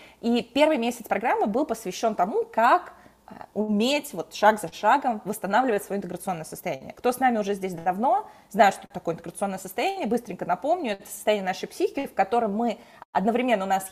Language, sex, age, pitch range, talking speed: Russian, female, 20-39, 200-255 Hz, 170 wpm